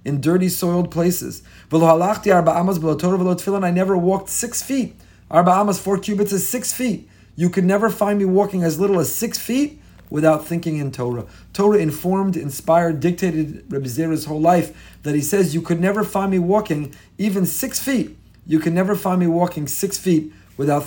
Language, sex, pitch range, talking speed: English, male, 155-205 Hz, 165 wpm